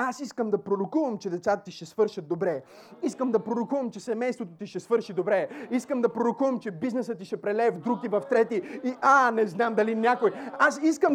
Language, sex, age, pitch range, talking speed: Bulgarian, male, 30-49, 195-315 Hz, 215 wpm